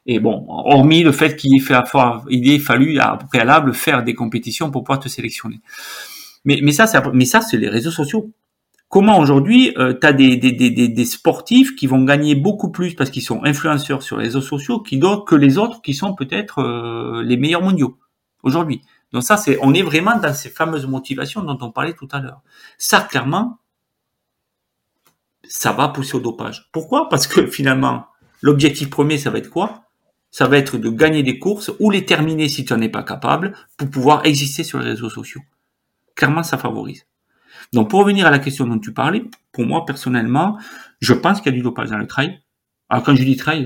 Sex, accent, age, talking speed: male, French, 40-59, 195 wpm